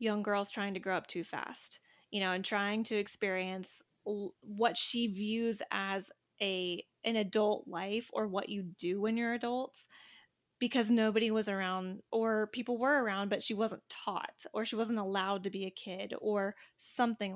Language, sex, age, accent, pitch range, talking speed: English, female, 10-29, American, 200-245 Hz, 175 wpm